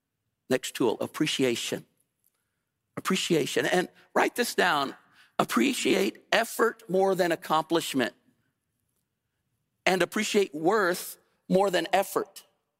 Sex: male